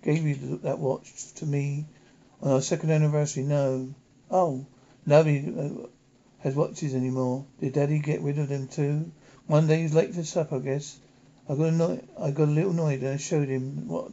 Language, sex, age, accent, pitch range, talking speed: English, male, 60-79, British, 130-155 Hz, 180 wpm